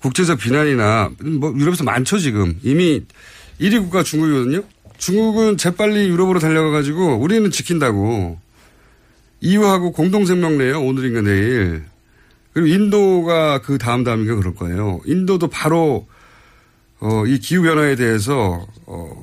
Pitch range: 105-170 Hz